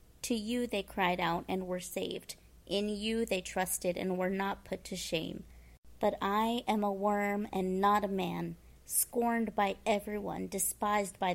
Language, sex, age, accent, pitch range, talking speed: English, female, 30-49, American, 185-220 Hz, 170 wpm